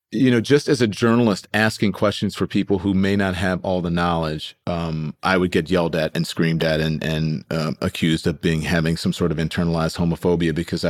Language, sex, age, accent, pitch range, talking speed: English, male, 40-59, American, 85-110 Hz, 215 wpm